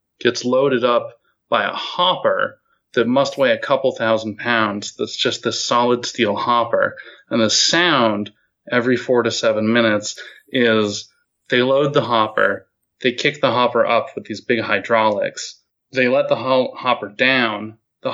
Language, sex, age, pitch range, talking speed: English, male, 20-39, 110-145 Hz, 155 wpm